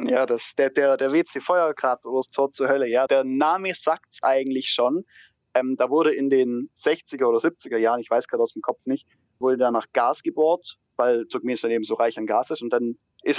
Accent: German